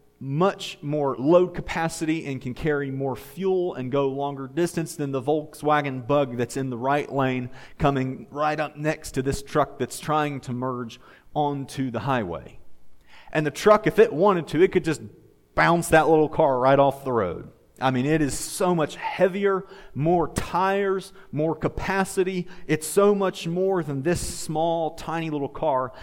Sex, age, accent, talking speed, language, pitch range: male, 40-59, American, 175 wpm, English, 130-160 Hz